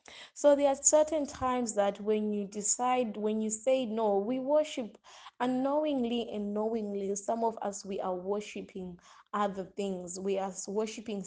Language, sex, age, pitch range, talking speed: English, female, 20-39, 195-235 Hz, 155 wpm